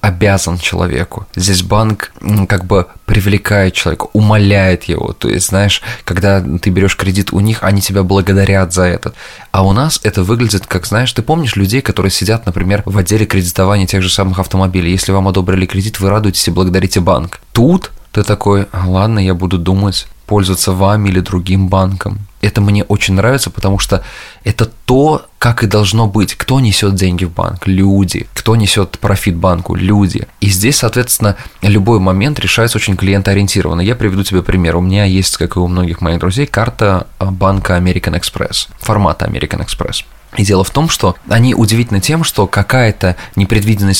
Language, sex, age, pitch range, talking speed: Russian, male, 20-39, 95-110 Hz, 175 wpm